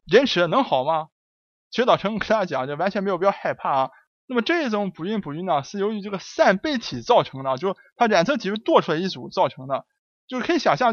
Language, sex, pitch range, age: Chinese, male, 160-240 Hz, 20-39